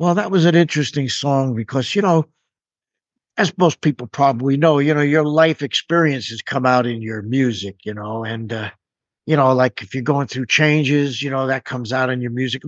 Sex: male